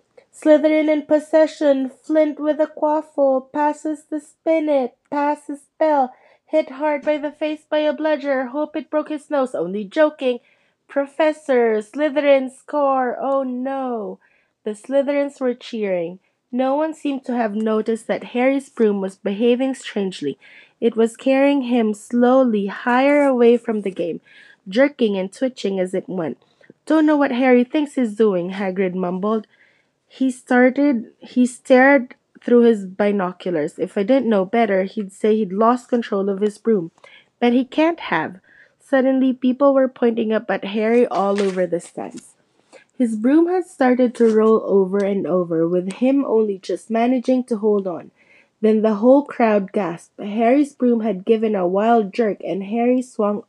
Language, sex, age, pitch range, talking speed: English, female, 20-39, 210-280 Hz, 155 wpm